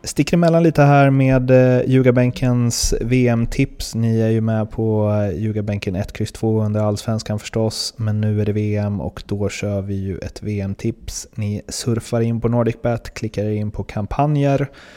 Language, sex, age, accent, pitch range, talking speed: Swedish, male, 30-49, native, 100-115 Hz, 160 wpm